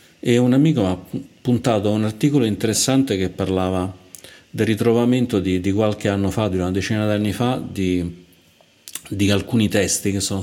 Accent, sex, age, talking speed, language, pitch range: native, male, 40-59, 180 wpm, Italian, 95-105 Hz